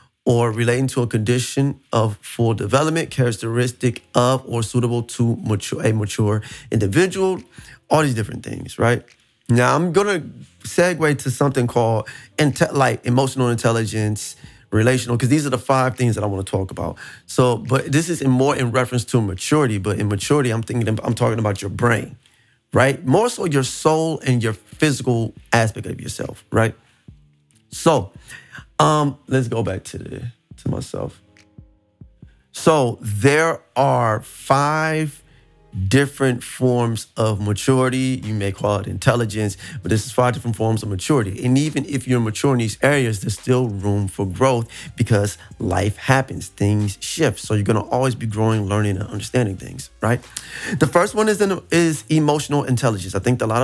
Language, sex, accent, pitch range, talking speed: English, male, American, 110-135 Hz, 165 wpm